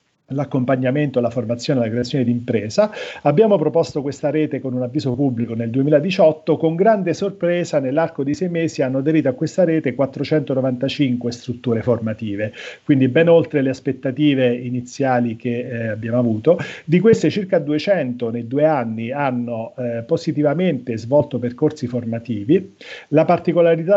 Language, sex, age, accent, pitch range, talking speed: Italian, male, 40-59, native, 125-160 Hz, 145 wpm